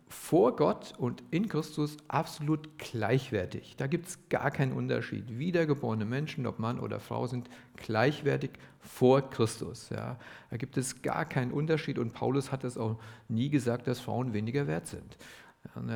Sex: male